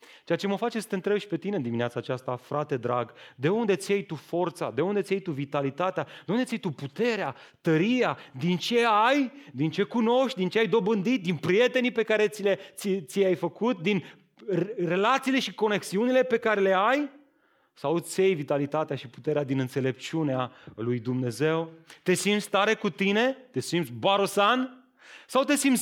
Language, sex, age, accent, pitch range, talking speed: Romanian, male, 30-49, native, 135-195 Hz, 185 wpm